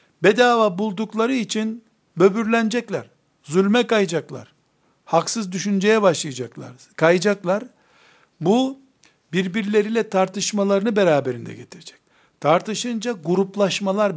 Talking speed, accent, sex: 70 wpm, native, male